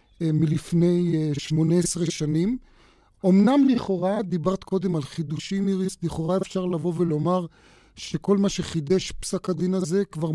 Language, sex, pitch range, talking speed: Hebrew, male, 155-190 Hz, 130 wpm